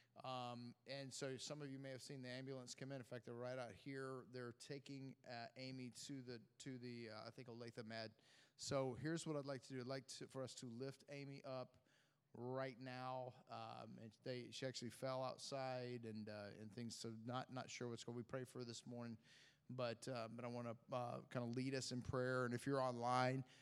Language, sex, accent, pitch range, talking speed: English, male, American, 120-135 Hz, 230 wpm